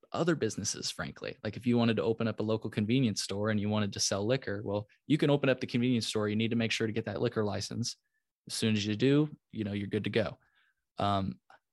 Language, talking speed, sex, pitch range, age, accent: English, 255 wpm, male, 105-120 Hz, 20-39, American